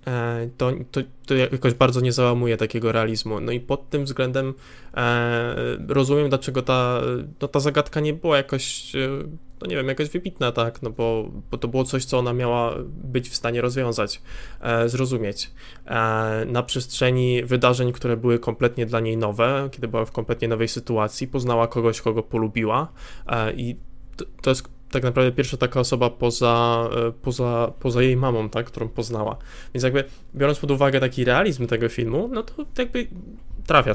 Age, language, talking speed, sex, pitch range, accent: 20-39, Polish, 165 wpm, male, 115-130 Hz, native